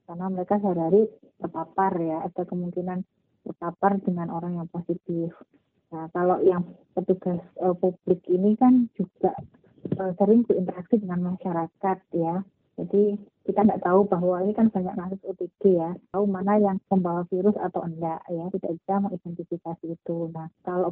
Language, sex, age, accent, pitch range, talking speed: Indonesian, female, 20-39, native, 175-200 Hz, 145 wpm